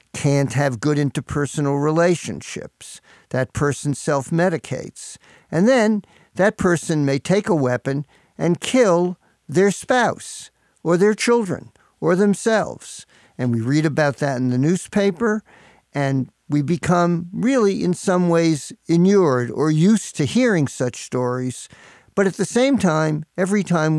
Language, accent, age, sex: English, American, 50-69, male